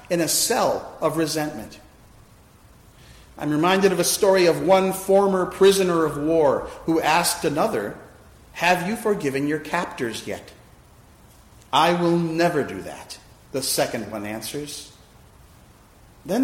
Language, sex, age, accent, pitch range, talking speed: English, male, 40-59, American, 120-180 Hz, 130 wpm